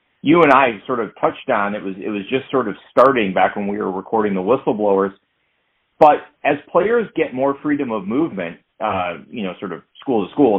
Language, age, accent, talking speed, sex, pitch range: English, 40-59, American, 215 wpm, male, 105-165 Hz